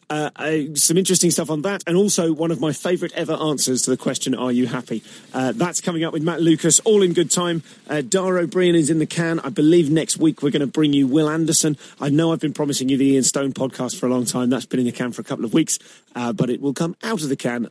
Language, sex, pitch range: English, male, 130-170 Hz